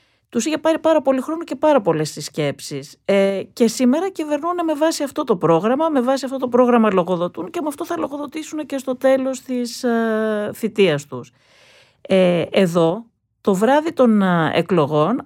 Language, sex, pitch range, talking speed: Greek, female, 160-265 Hz, 155 wpm